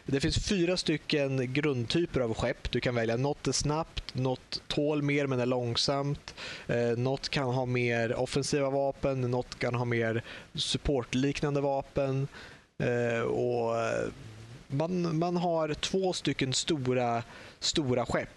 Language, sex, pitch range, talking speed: Swedish, male, 120-145 Hz, 135 wpm